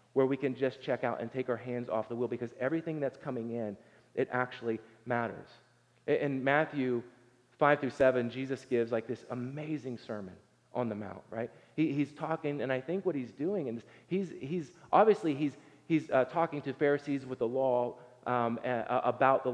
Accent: American